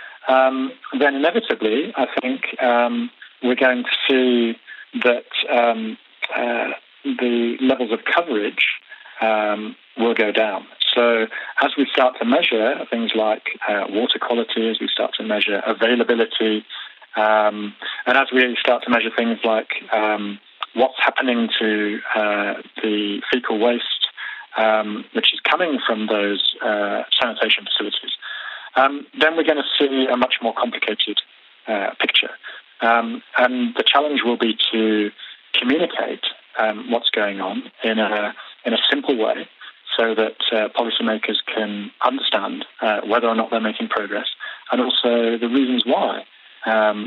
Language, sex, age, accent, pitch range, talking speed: English, male, 40-59, British, 110-125 Hz, 145 wpm